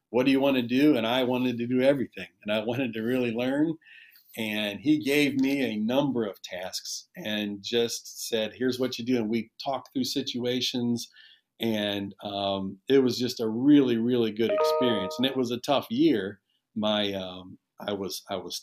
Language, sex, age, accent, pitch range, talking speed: English, male, 40-59, American, 110-130 Hz, 195 wpm